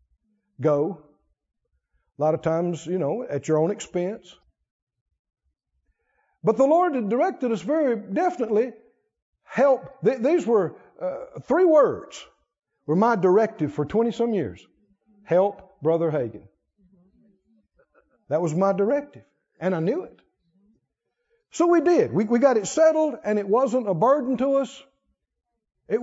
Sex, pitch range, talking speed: male, 165-235 Hz, 140 wpm